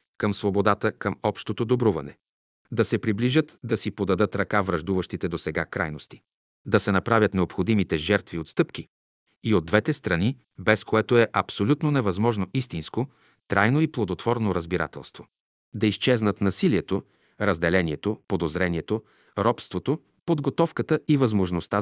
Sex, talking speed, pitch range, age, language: male, 125 wpm, 95-120 Hz, 40-59, Bulgarian